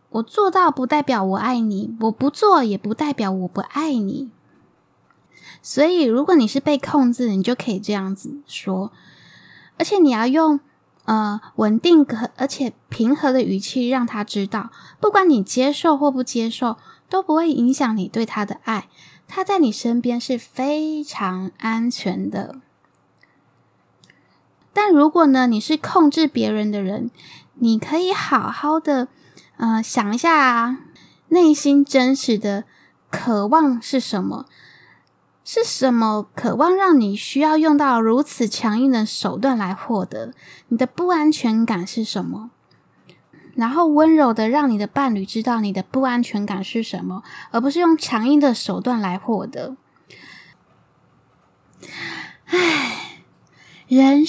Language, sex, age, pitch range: Chinese, female, 10-29, 220-295 Hz